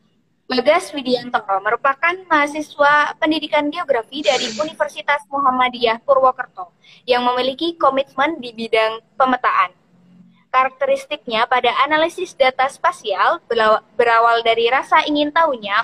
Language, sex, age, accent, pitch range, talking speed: Indonesian, female, 20-39, native, 235-295 Hz, 100 wpm